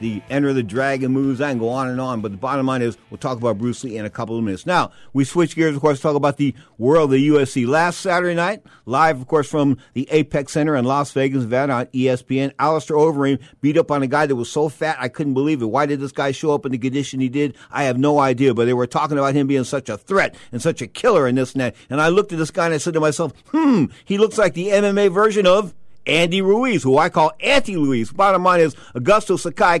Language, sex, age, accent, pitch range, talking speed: English, male, 50-69, American, 135-195 Hz, 270 wpm